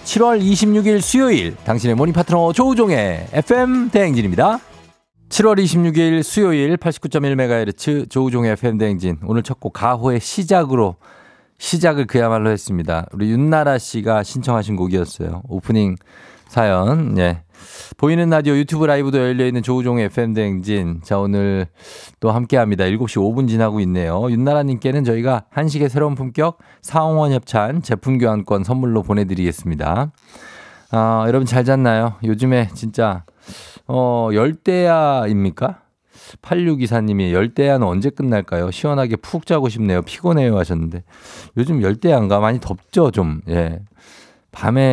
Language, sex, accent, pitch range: Korean, male, native, 100-135 Hz